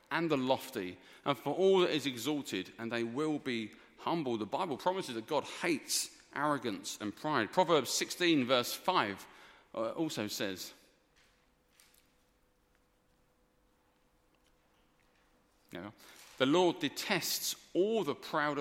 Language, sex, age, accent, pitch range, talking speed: English, male, 40-59, British, 130-175 Hz, 115 wpm